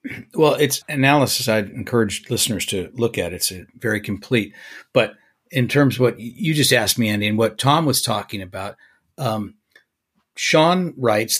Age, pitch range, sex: 50-69, 105-135 Hz, male